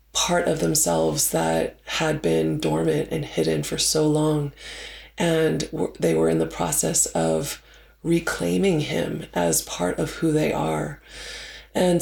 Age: 20-39